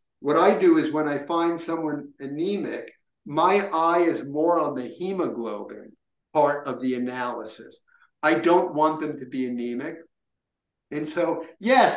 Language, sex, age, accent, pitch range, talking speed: English, male, 50-69, American, 145-185 Hz, 150 wpm